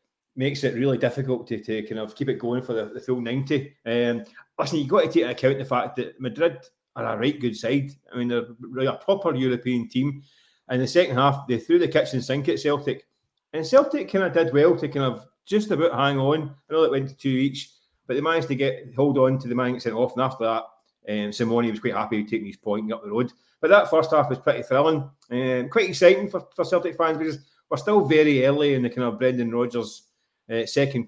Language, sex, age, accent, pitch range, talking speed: English, male, 30-49, British, 125-160 Hz, 245 wpm